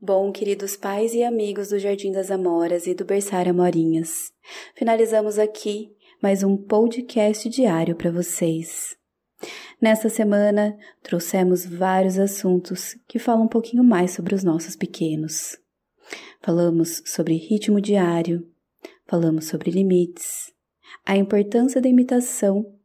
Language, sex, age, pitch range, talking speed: Portuguese, female, 20-39, 180-230 Hz, 120 wpm